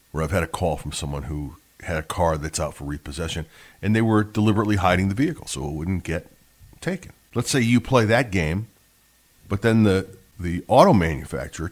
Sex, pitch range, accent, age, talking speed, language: male, 80-100 Hz, American, 40-59, 195 wpm, English